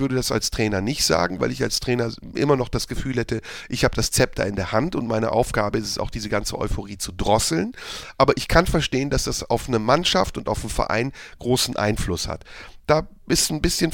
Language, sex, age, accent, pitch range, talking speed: German, male, 40-59, German, 120-165 Hz, 230 wpm